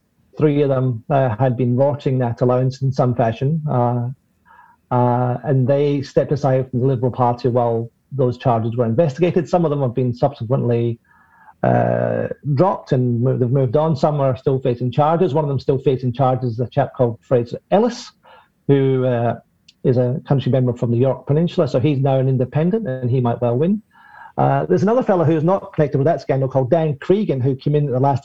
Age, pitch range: 40-59, 125-150 Hz